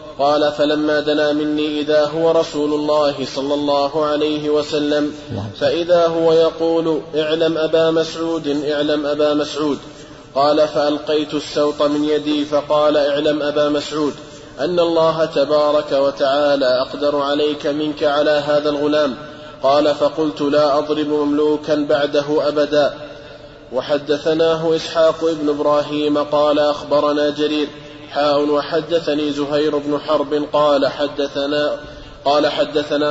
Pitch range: 145-150 Hz